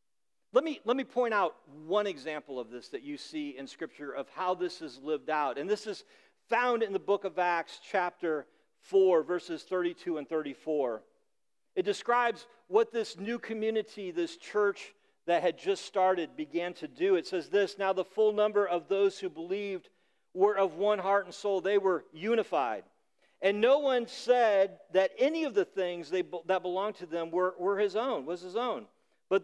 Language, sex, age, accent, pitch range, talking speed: English, male, 50-69, American, 180-240 Hz, 190 wpm